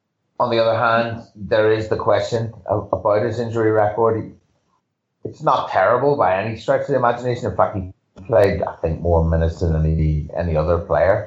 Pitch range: 90-115 Hz